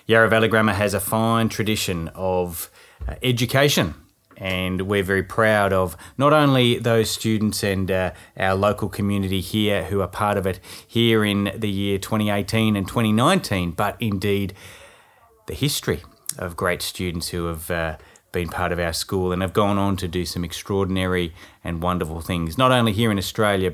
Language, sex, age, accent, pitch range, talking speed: English, male, 30-49, Australian, 90-110 Hz, 170 wpm